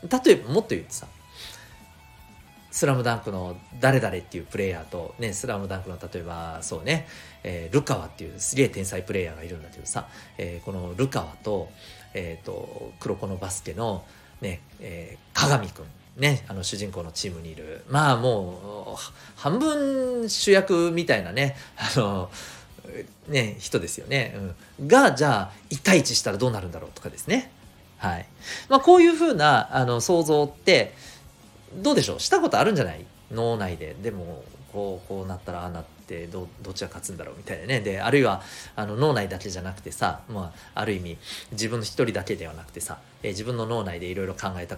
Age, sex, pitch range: 40-59, male, 90-140 Hz